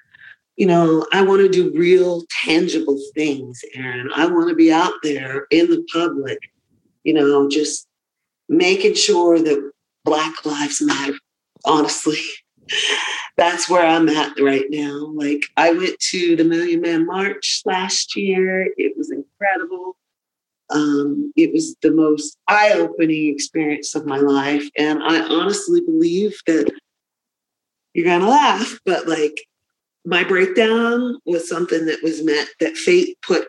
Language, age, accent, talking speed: English, 40-59, American, 140 wpm